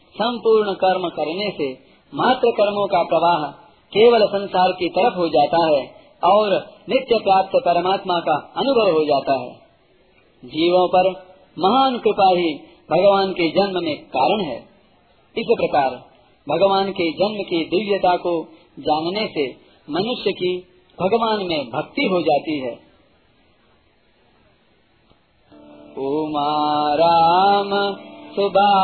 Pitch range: 165-200 Hz